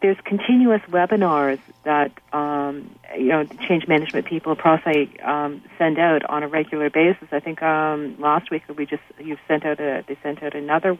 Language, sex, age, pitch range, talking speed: English, female, 40-59, 150-175 Hz, 185 wpm